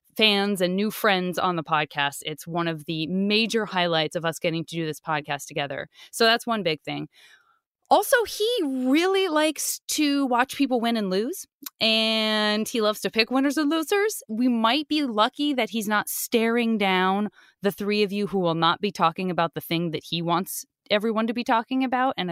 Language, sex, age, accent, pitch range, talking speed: English, female, 30-49, American, 185-265 Hz, 200 wpm